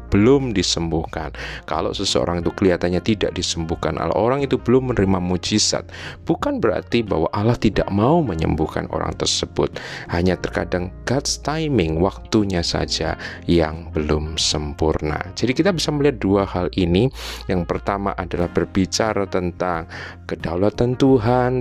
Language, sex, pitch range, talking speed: Indonesian, male, 80-100 Hz, 125 wpm